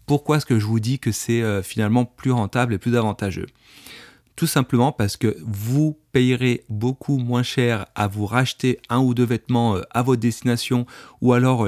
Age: 30-49